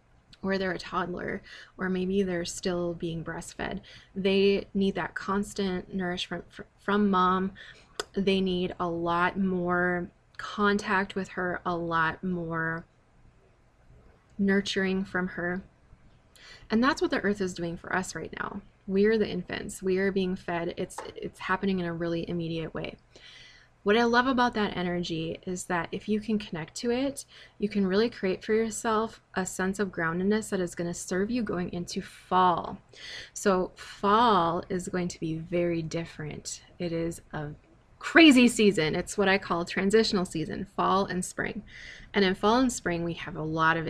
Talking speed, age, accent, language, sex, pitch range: 170 wpm, 20-39, American, English, female, 170-205 Hz